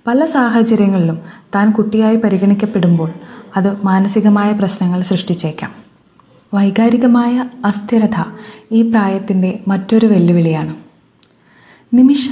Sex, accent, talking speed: female, native, 80 wpm